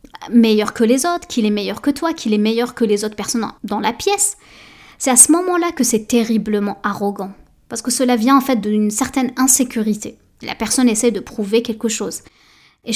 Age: 20-39